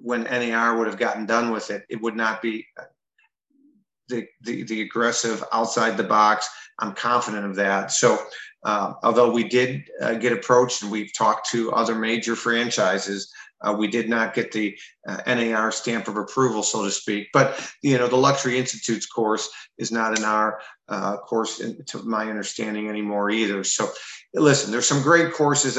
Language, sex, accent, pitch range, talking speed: English, male, American, 110-125 Hz, 180 wpm